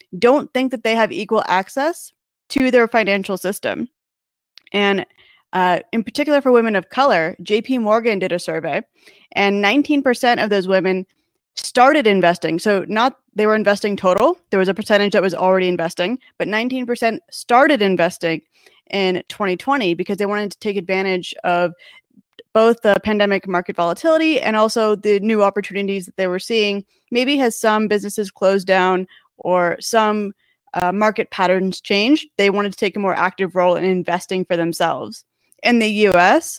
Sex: female